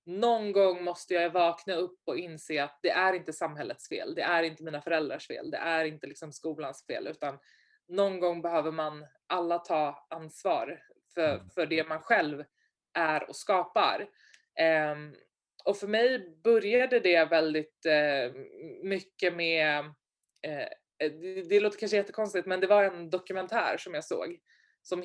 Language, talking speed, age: English, 160 wpm, 20-39